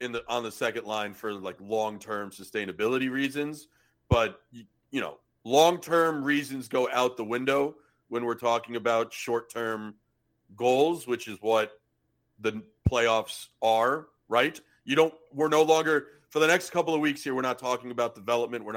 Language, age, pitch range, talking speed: English, 40-59, 110-140 Hz, 165 wpm